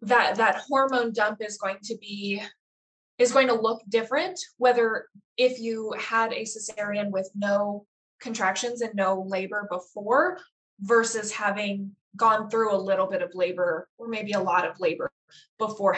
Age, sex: 20-39, female